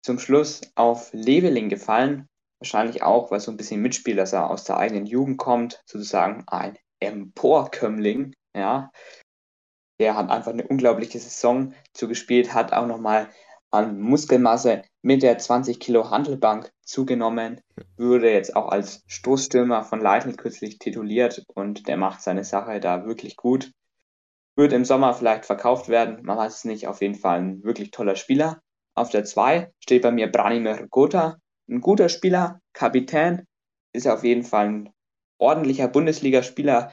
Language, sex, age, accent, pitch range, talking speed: German, male, 20-39, German, 105-130 Hz, 150 wpm